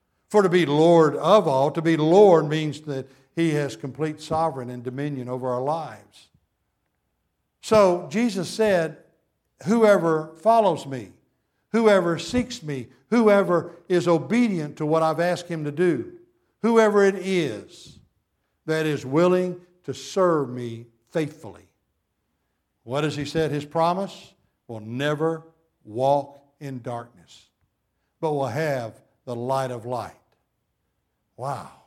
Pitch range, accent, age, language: 140-190 Hz, American, 60-79, English